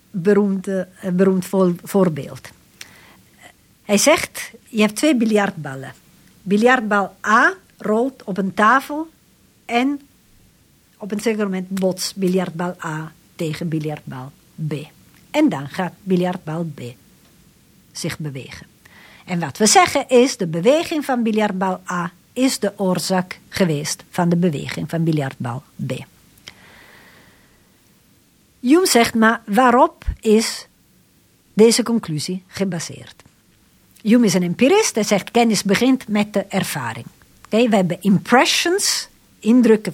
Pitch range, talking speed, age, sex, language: 175-235 Hz, 115 wpm, 50-69, female, Dutch